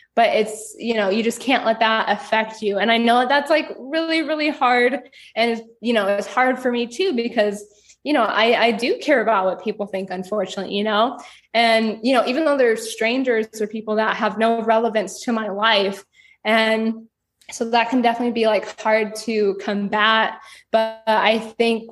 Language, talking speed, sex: English, 190 wpm, female